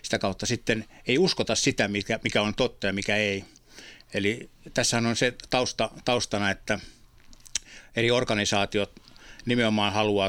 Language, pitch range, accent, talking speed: Finnish, 100-120 Hz, native, 140 wpm